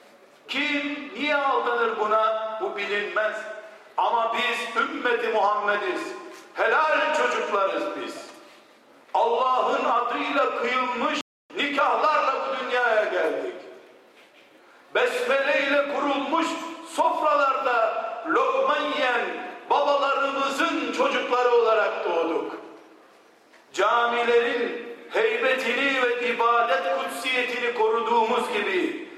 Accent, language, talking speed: native, Turkish, 75 wpm